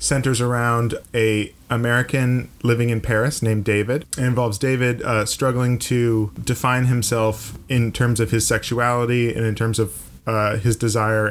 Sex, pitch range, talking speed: male, 110-125 Hz, 155 wpm